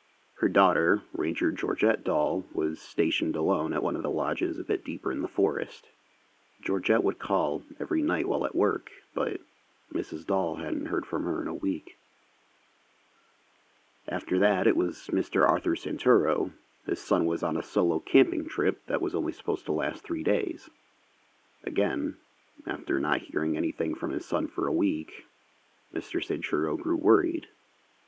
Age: 30-49